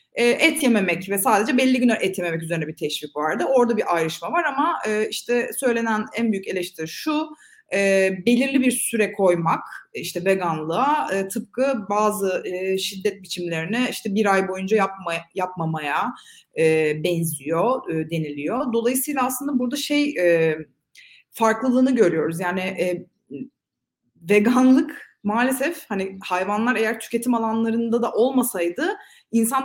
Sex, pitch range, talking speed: female, 185-260 Hz, 115 wpm